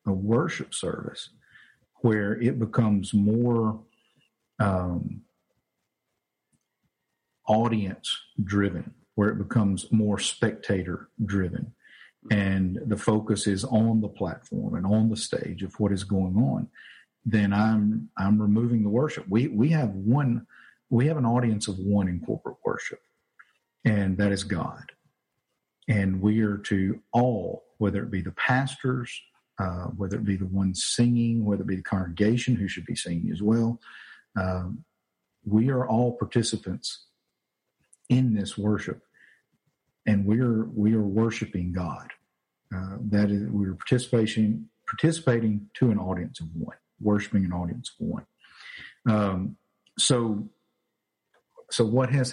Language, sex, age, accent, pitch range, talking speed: English, male, 50-69, American, 100-115 Hz, 140 wpm